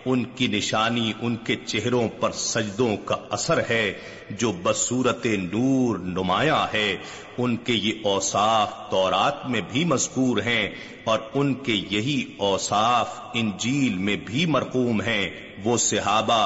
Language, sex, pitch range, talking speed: Urdu, male, 100-125 Hz, 130 wpm